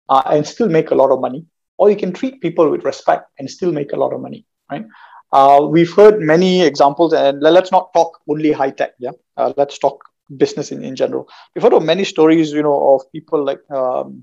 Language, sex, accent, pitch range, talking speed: English, male, Indian, 145-185 Hz, 225 wpm